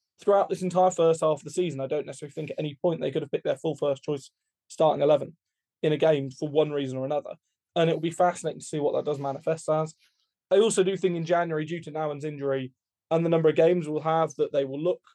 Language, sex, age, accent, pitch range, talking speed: English, male, 20-39, British, 145-165 Hz, 260 wpm